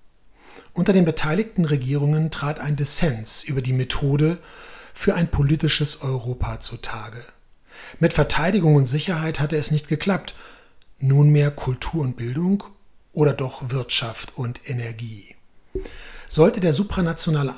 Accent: German